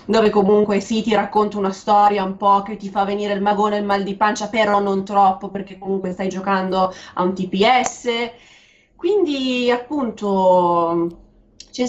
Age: 20-39